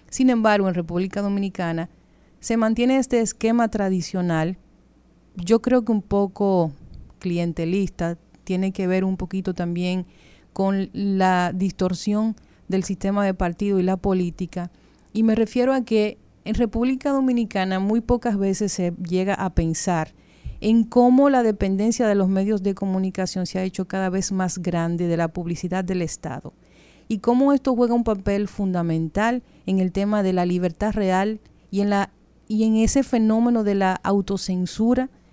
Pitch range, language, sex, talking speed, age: 180-215 Hz, Spanish, female, 155 wpm, 40-59